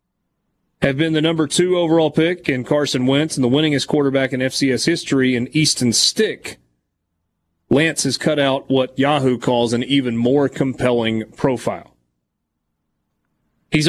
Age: 30-49